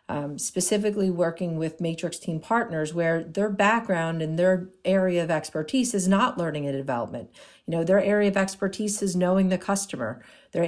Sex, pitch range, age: female, 165-195 Hz, 50-69